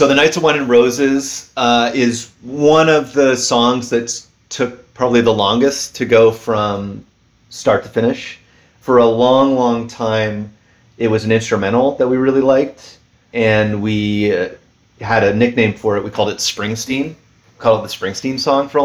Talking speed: 180 wpm